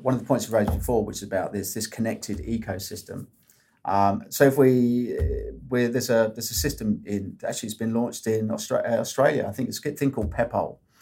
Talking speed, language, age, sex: 220 wpm, English, 30-49, male